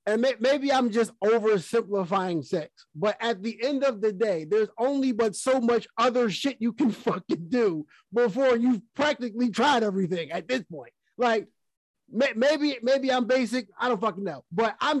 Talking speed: 170 wpm